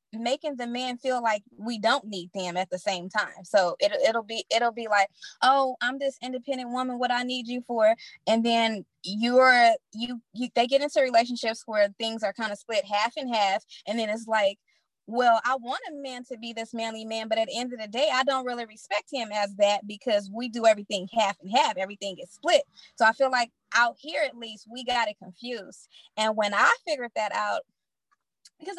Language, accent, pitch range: English, American, 205-255 Hz